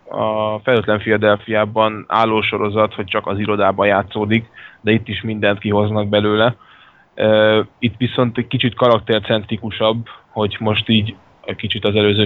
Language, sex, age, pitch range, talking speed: Hungarian, male, 10-29, 100-110 Hz, 135 wpm